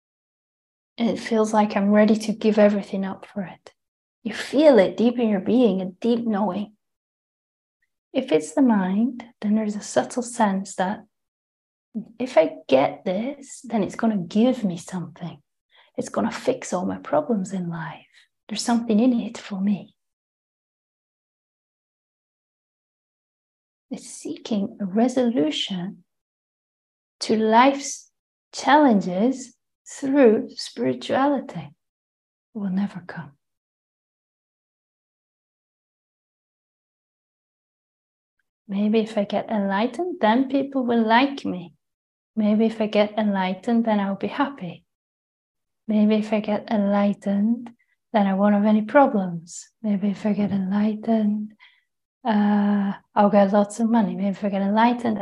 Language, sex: English, female